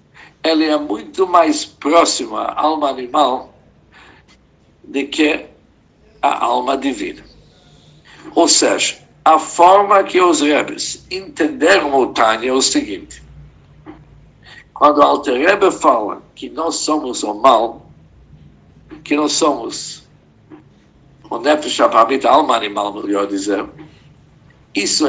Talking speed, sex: 105 wpm, male